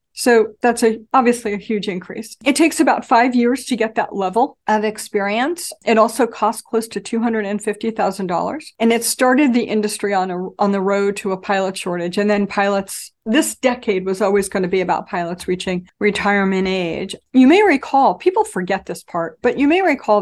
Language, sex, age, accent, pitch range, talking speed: English, female, 50-69, American, 205-275 Hz, 205 wpm